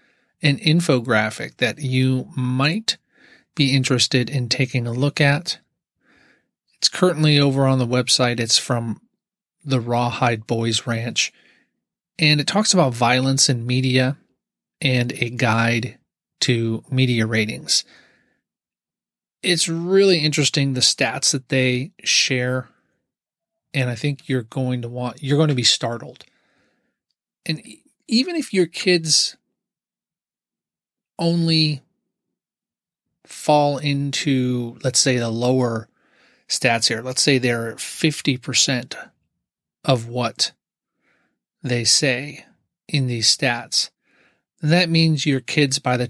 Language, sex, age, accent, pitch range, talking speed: English, male, 40-59, American, 120-150 Hz, 115 wpm